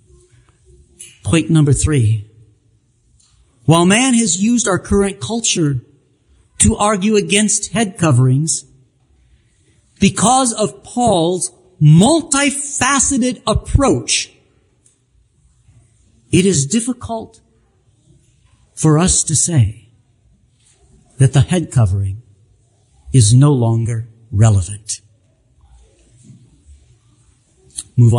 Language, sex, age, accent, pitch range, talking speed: English, male, 50-69, American, 110-175 Hz, 75 wpm